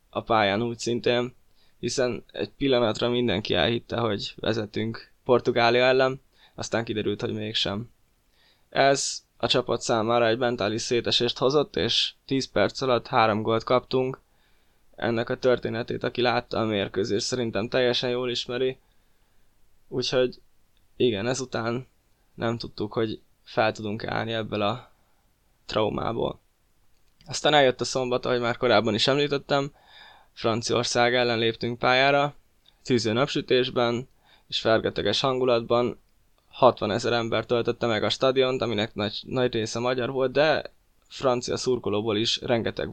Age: 10-29